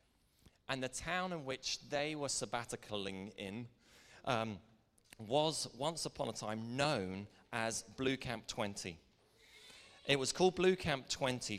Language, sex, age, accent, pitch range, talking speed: English, male, 30-49, British, 105-140 Hz, 135 wpm